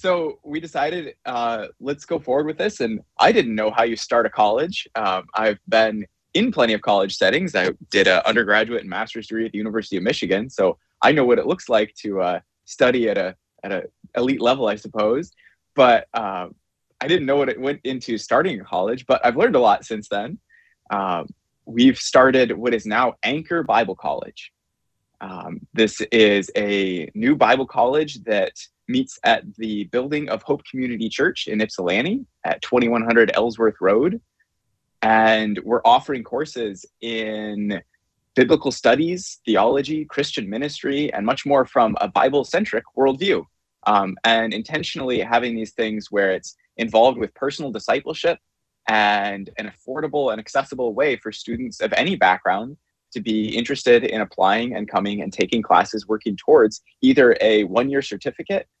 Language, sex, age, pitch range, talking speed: English, male, 20-39, 110-145 Hz, 165 wpm